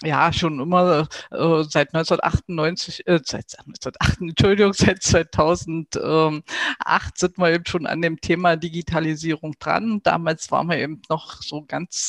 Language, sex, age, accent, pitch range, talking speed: German, female, 50-69, German, 150-170 Hz, 150 wpm